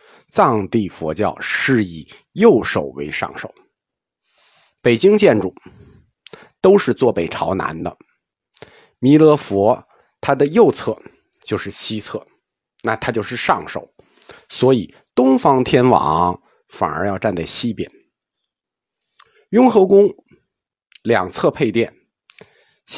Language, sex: Chinese, male